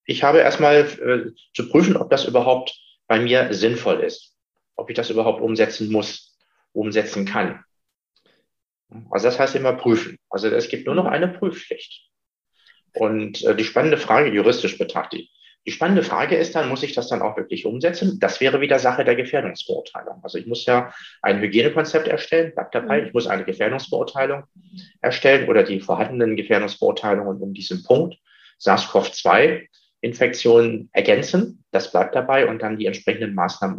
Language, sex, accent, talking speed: German, male, German, 160 wpm